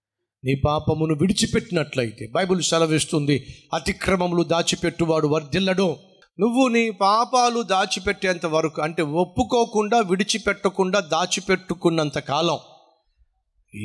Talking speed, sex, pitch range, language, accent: 80 wpm, male, 145-220 Hz, Telugu, native